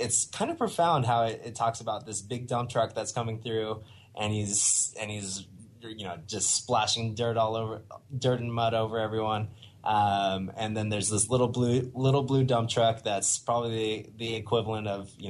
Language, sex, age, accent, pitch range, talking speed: English, male, 20-39, American, 105-120 Hz, 195 wpm